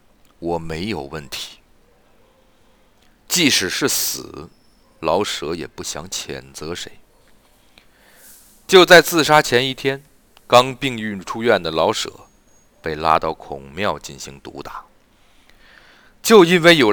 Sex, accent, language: male, native, Chinese